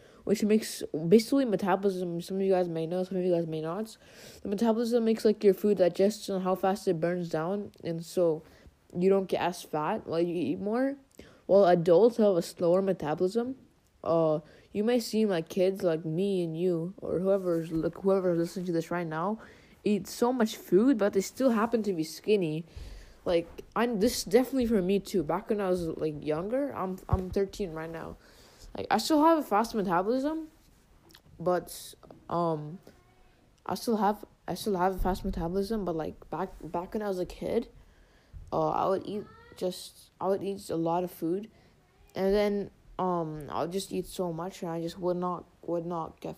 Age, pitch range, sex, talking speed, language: 20-39, 170-205 Hz, female, 195 wpm, English